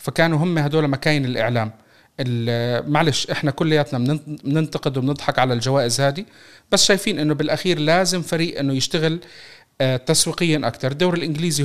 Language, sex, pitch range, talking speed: Arabic, male, 135-170 Hz, 130 wpm